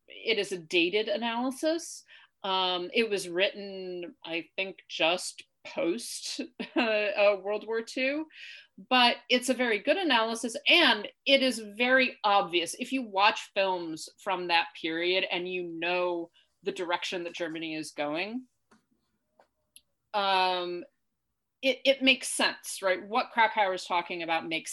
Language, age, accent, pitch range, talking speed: English, 30-49, American, 175-250 Hz, 135 wpm